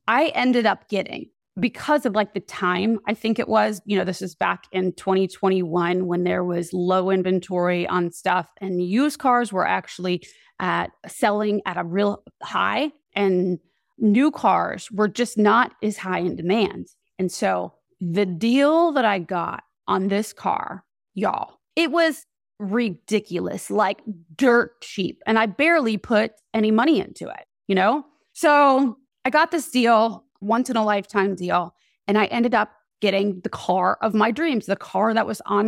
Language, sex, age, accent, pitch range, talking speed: English, female, 20-39, American, 190-235 Hz, 165 wpm